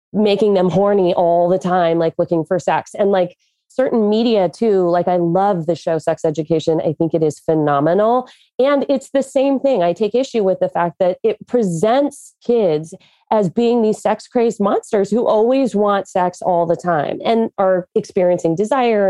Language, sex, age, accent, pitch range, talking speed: English, female, 30-49, American, 175-220 Hz, 185 wpm